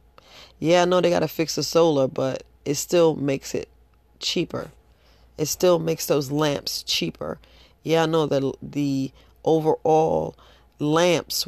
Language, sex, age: English, female, 40-59